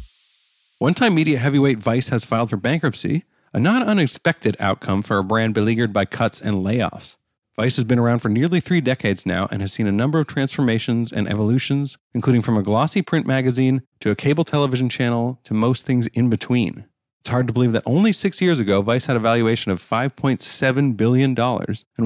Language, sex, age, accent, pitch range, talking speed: English, male, 40-59, American, 110-140 Hz, 190 wpm